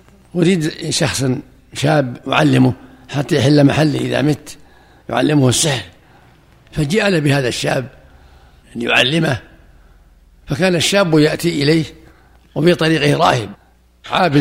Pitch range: 100-155 Hz